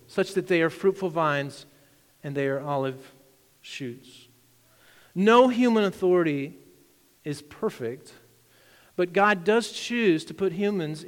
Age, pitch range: 50-69, 175-235 Hz